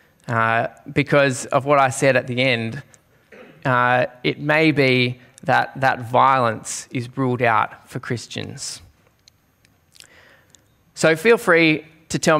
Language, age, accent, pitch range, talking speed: English, 20-39, Australian, 125-155 Hz, 125 wpm